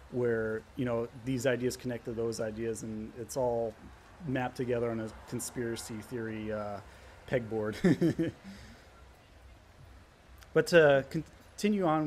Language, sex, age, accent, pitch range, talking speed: English, male, 30-49, American, 115-175 Hz, 120 wpm